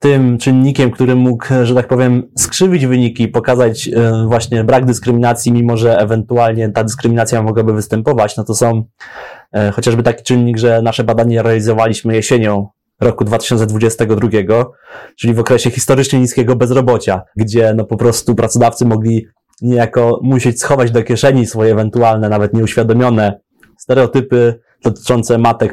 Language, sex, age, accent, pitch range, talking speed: Polish, male, 20-39, native, 115-125 Hz, 135 wpm